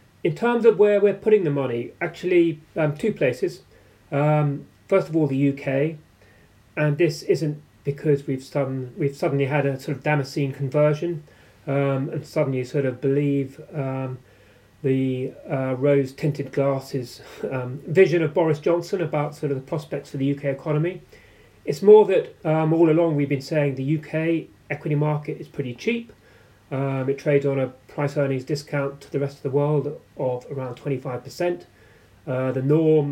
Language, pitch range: English, 135-160 Hz